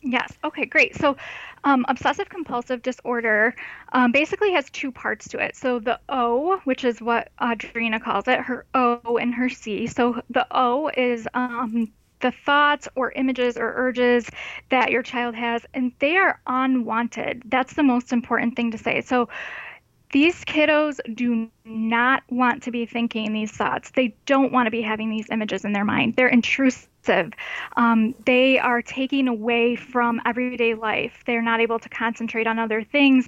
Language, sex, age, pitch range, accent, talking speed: English, female, 10-29, 230-260 Hz, American, 170 wpm